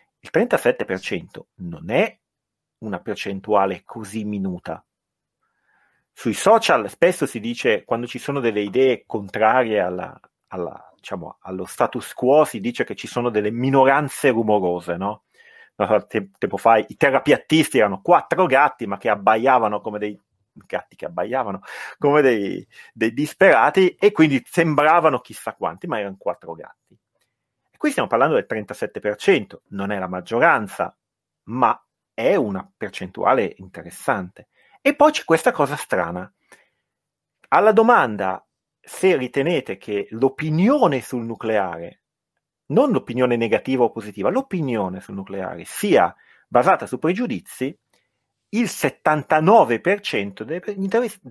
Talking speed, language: 125 wpm, Italian